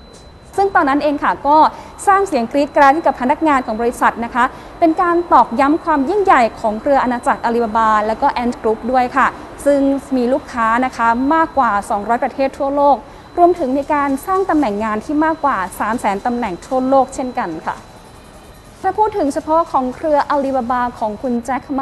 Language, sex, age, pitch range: Thai, female, 20-39, 230-285 Hz